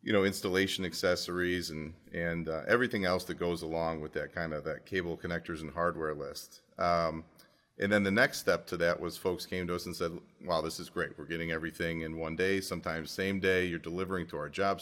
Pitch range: 85-95 Hz